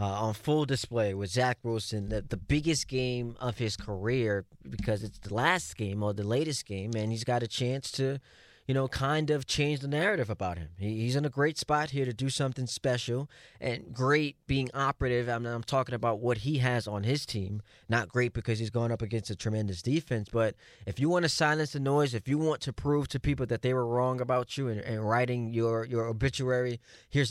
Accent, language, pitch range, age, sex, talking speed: American, English, 115-145 Hz, 20-39, male, 220 wpm